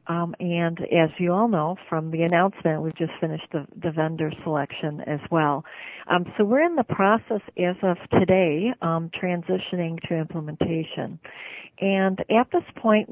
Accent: American